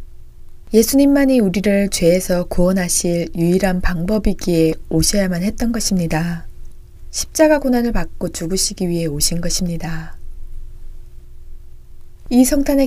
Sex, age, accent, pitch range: female, 20-39, native, 170-220 Hz